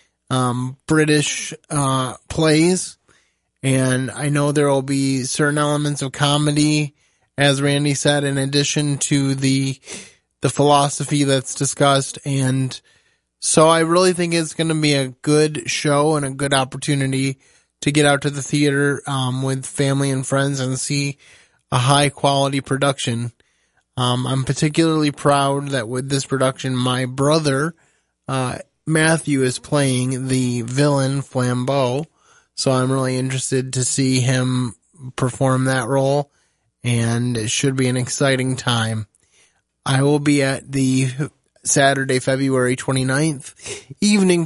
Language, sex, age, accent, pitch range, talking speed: English, male, 20-39, American, 130-145 Hz, 135 wpm